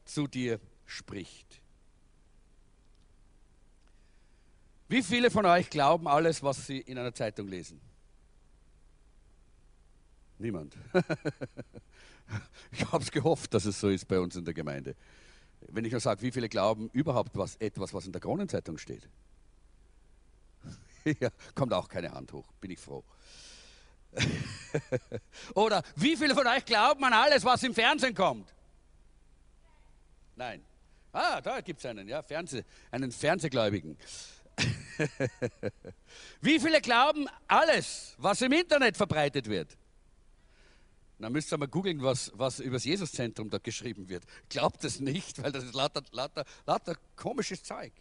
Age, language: 50-69, German